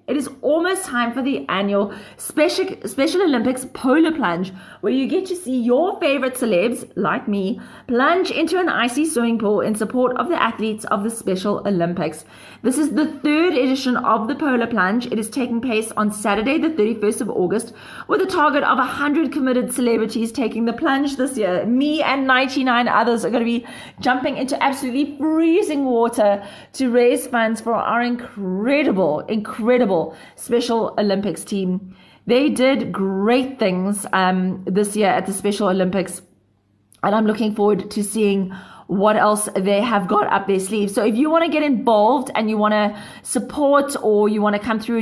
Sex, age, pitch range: female, 30-49, 205-265 Hz